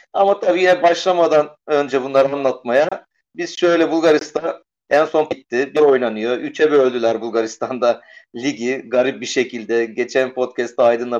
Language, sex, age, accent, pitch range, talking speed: Turkish, male, 40-59, native, 115-150 Hz, 135 wpm